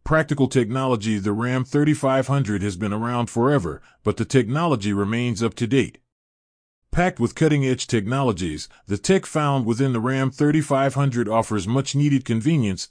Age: 30-49